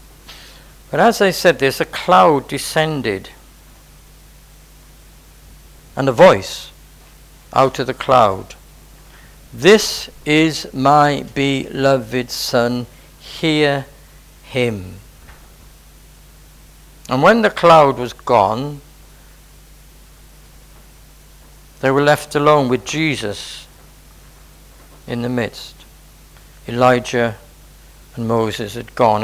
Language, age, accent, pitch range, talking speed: English, 60-79, British, 105-140 Hz, 85 wpm